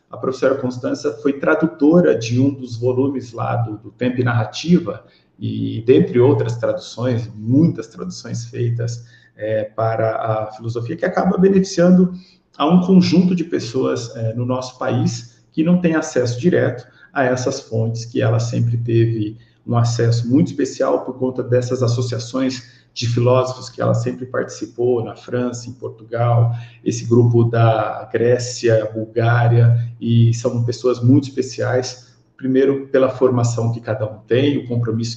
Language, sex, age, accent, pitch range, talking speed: English, male, 50-69, Brazilian, 115-130 Hz, 145 wpm